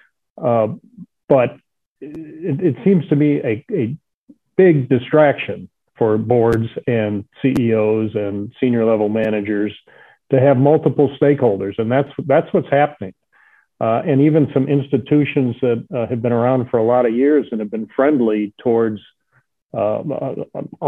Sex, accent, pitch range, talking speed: male, American, 110-135 Hz, 140 wpm